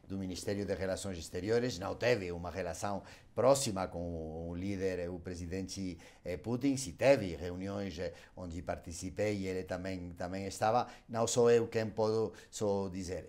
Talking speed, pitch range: 145 wpm, 105-145 Hz